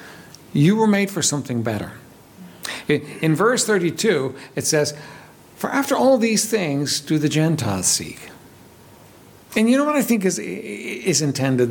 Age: 60-79